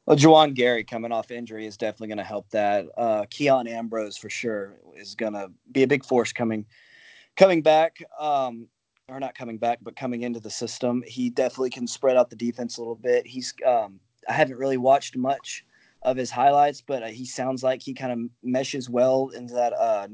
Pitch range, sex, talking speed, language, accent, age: 115-130 Hz, male, 210 wpm, English, American, 20-39